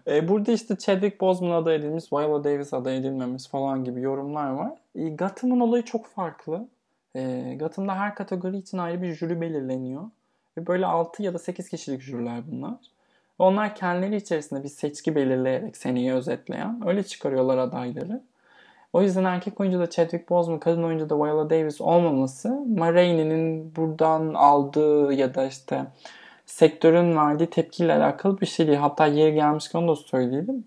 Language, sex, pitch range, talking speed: Turkish, male, 140-190 Hz, 155 wpm